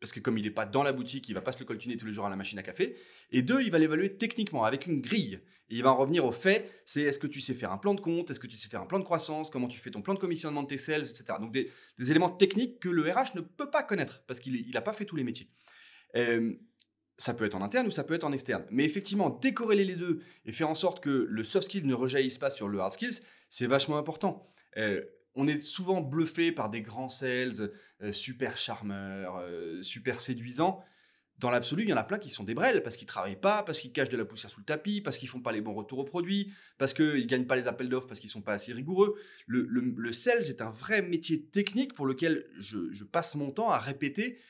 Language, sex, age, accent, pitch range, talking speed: English, male, 30-49, French, 125-190 Hz, 275 wpm